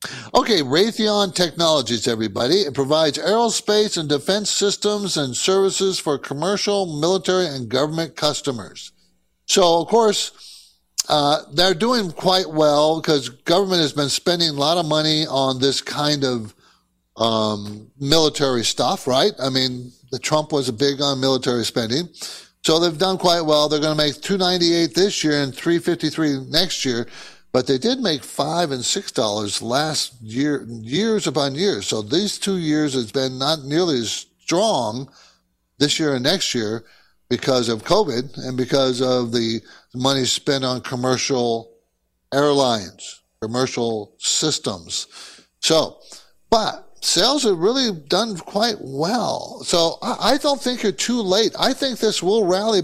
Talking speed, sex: 150 wpm, male